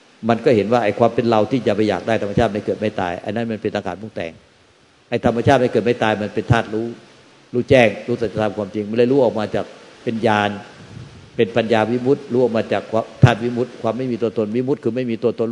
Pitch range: 105-125 Hz